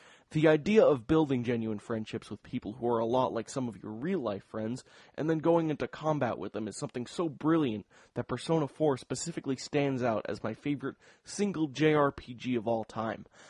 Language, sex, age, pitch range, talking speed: English, male, 20-39, 120-150 Hz, 195 wpm